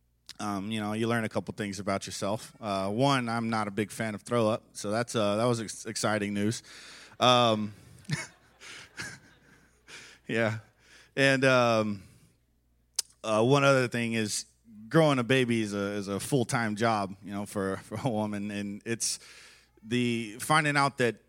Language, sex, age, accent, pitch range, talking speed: English, male, 30-49, American, 105-125 Hz, 165 wpm